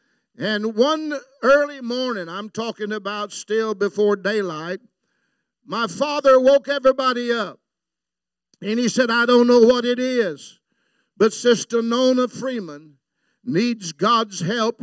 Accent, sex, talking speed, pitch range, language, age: American, male, 125 wpm, 210-250 Hz, English, 50-69